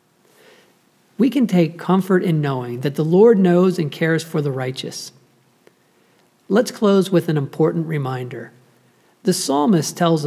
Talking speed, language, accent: 140 wpm, English, American